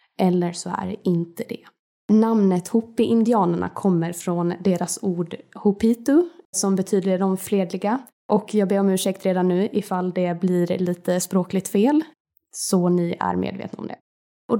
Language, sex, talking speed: Swedish, female, 150 wpm